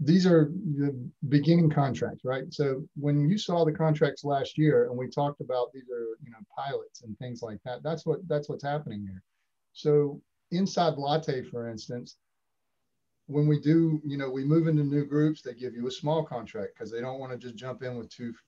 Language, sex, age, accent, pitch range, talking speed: English, male, 40-59, American, 120-150 Hz, 210 wpm